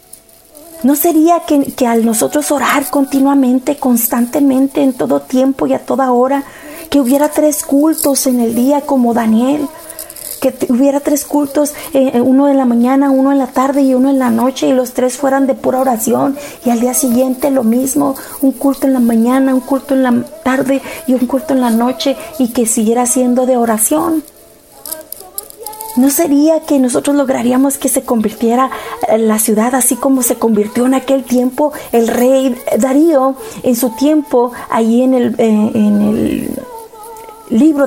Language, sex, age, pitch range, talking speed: Spanish, female, 30-49, 250-300 Hz, 170 wpm